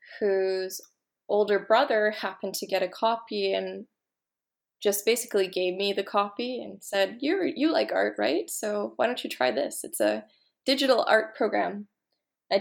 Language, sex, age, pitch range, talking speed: English, female, 20-39, 190-220 Hz, 160 wpm